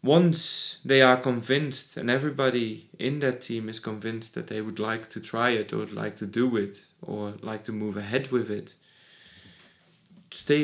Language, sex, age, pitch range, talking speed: English, male, 30-49, 115-140 Hz, 180 wpm